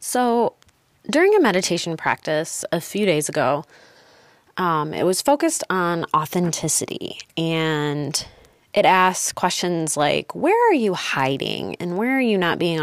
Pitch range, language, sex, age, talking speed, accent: 155-205 Hz, English, female, 20-39, 140 wpm, American